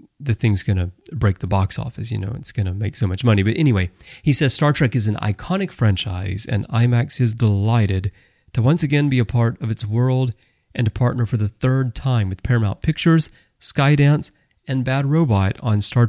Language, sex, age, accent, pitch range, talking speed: English, male, 30-49, American, 105-135 Hz, 210 wpm